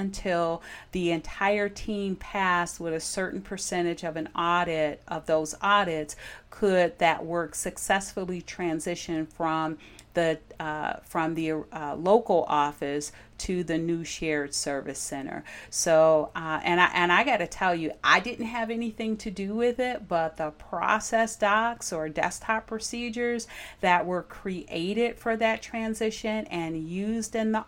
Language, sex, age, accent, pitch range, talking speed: English, female, 40-59, American, 165-205 Hz, 150 wpm